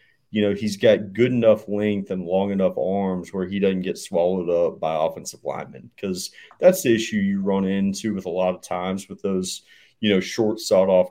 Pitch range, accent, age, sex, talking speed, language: 90-110 Hz, American, 30-49, male, 205 wpm, English